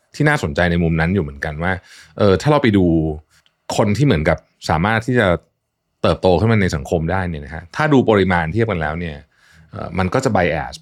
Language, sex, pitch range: Thai, male, 80-115 Hz